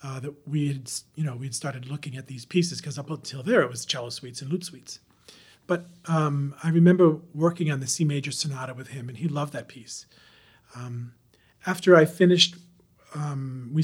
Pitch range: 130-160 Hz